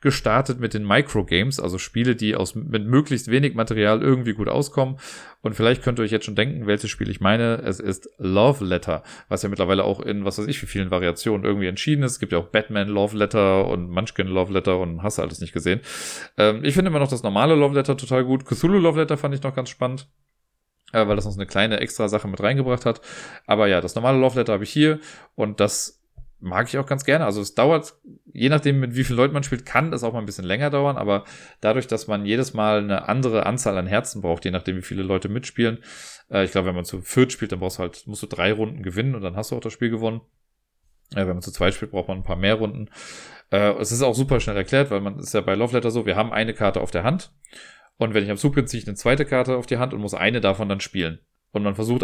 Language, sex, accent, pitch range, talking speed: German, male, German, 95-125 Hz, 260 wpm